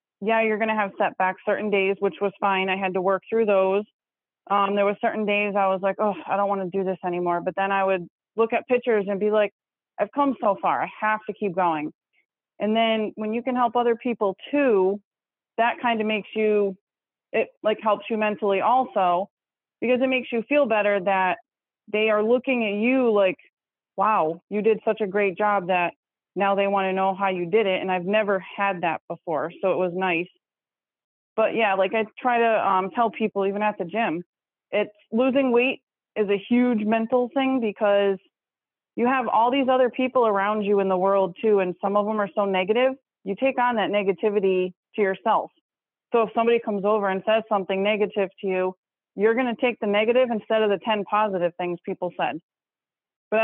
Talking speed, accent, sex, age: 205 wpm, American, female, 30-49